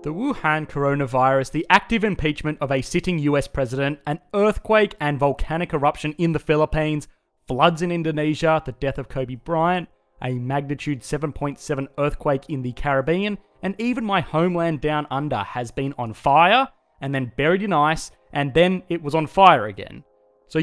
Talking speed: 165 wpm